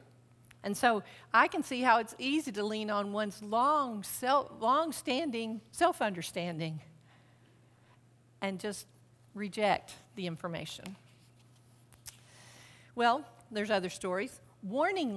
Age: 50-69